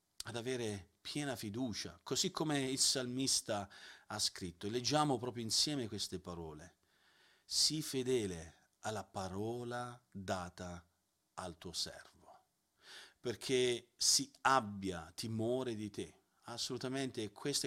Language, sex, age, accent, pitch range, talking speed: Italian, male, 40-59, native, 105-135 Hz, 105 wpm